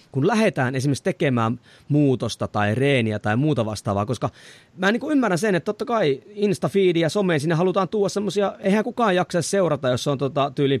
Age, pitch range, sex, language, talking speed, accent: 30-49, 125-180 Hz, male, Finnish, 190 wpm, native